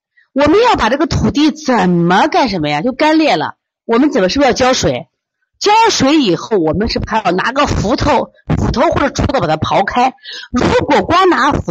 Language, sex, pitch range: Chinese, female, 190-320 Hz